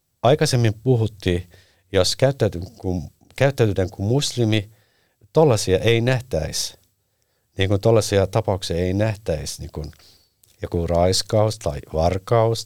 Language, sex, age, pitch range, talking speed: Finnish, male, 60-79, 90-120 Hz, 90 wpm